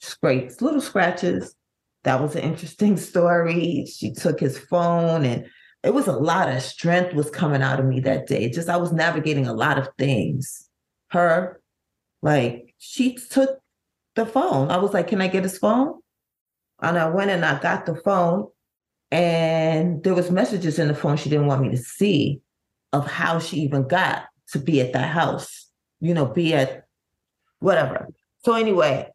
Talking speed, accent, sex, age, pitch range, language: 175 wpm, American, female, 30-49, 150-195 Hz, English